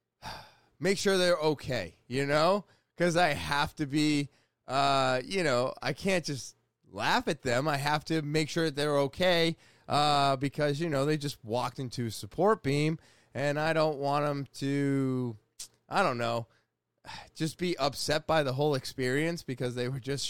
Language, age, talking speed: English, 20-39, 170 wpm